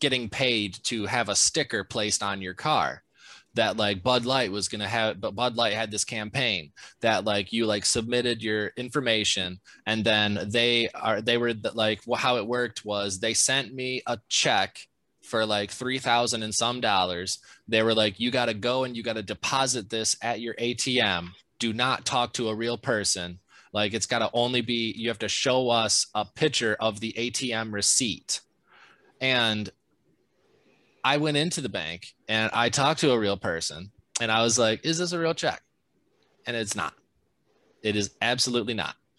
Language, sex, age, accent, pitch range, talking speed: English, male, 20-39, American, 105-125 Hz, 190 wpm